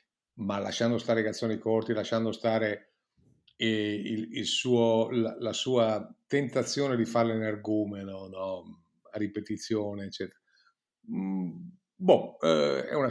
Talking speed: 130 wpm